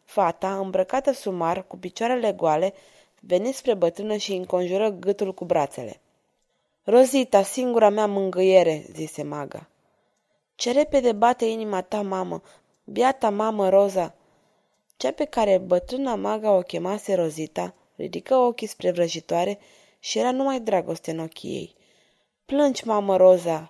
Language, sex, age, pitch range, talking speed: Romanian, female, 20-39, 190-235 Hz, 130 wpm